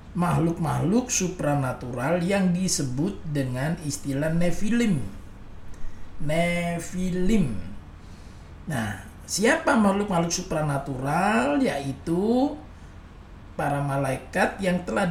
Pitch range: 135-200 Hz